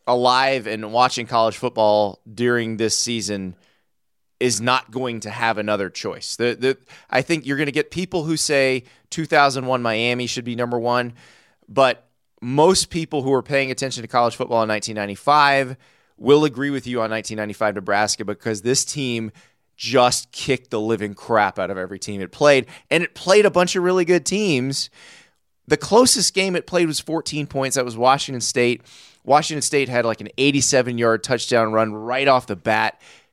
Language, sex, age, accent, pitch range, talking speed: English, male, 20-39, American, 115-140 Hz, 175 wpm